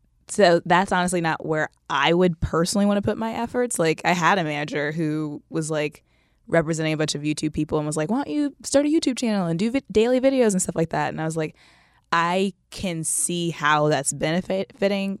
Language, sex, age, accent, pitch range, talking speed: English, female, 20-39, American, 155-210 Hz, 220 wpm